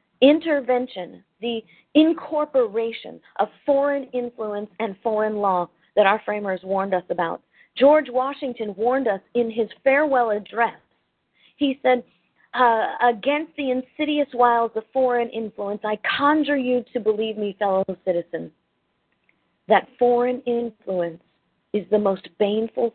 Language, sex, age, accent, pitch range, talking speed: English, female, 40-59, American, 210-275 Hz, 125 wpm